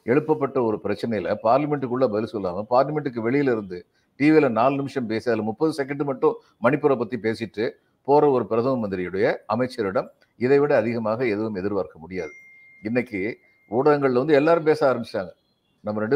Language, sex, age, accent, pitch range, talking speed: Tamil, male, 50-69, native, 120-155 Hz, 140 wpm